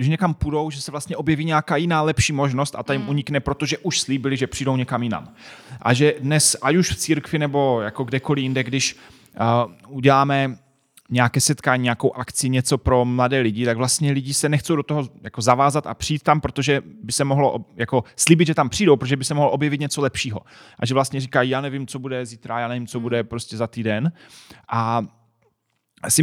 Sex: male